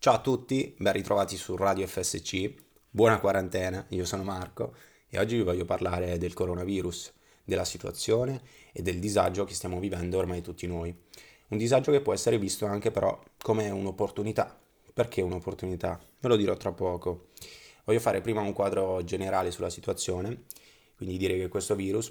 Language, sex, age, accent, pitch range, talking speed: Italian, male, 20-39, native, 90-105 Hz, 165 wpm